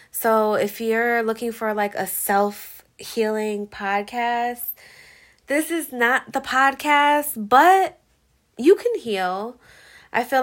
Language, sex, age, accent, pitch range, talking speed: English, female, 20-39, American, 180-220 Hz, 115 wpm